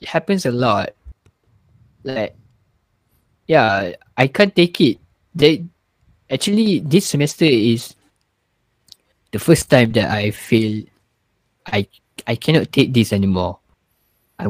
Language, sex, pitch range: Malay, male, 100-135 Hz